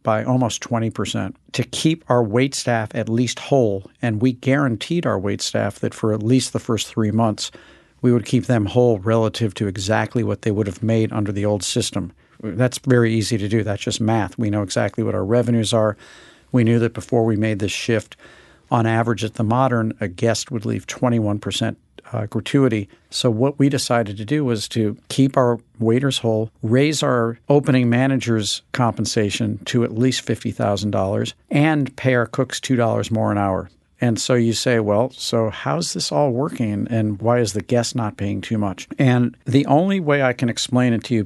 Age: 50-69